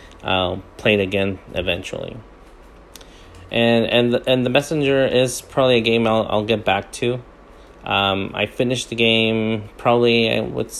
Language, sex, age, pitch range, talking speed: English, male, 30-49, 95-115 Hz, 150 wpm